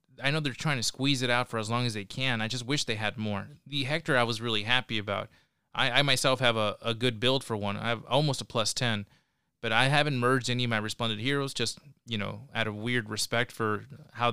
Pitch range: 110-130 Hz